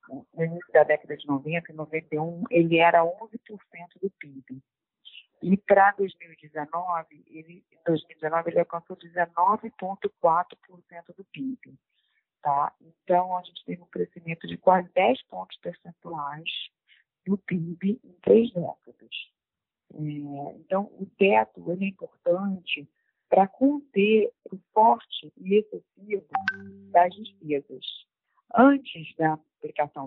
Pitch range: 155-195 Hz